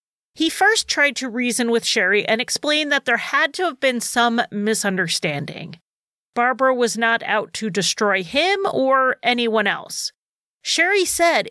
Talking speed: 150 wpm